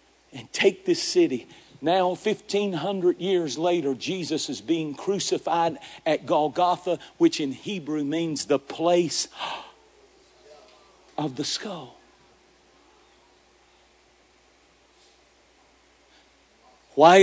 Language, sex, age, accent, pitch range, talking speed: English, male, 50-69, American, 175-245 Hz, 85 wpm